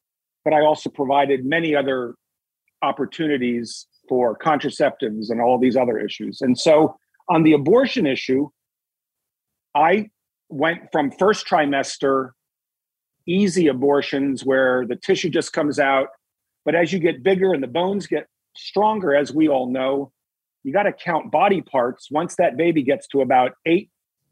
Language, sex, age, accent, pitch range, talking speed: English, male, 50-69, American, 130-175 Hz, 150 wpm